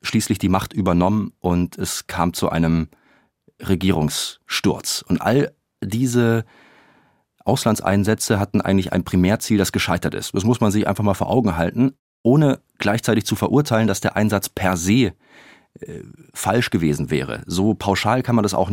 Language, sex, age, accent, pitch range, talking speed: German, male, 30-49, German, 90-110 Hz, 155 wpm